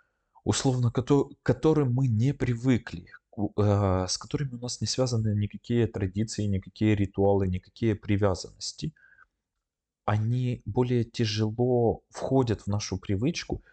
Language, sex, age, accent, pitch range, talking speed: Russian, male, 20-39, native, 90-110 Hz, 110 wpm